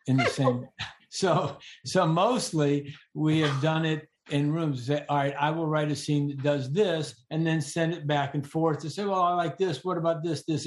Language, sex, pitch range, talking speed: English, male, 130-160 Hz, 220 wpm